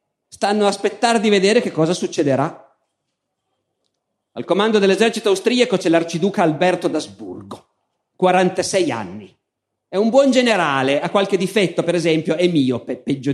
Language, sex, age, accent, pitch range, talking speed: Italian, male, 40-59, native, 160-230 Hz, 140 wpm